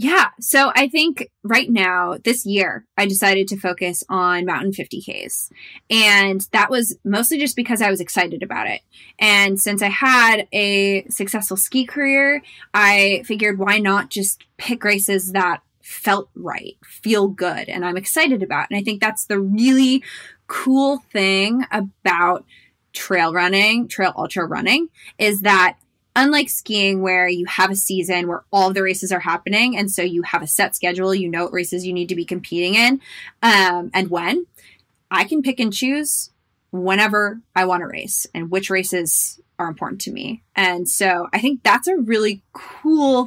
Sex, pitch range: female, 185-240 Hz